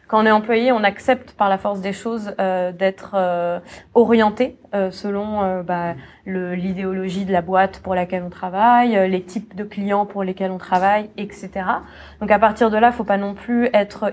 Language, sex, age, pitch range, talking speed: French, female, 20-39, 190-215 Hz, 205 wpm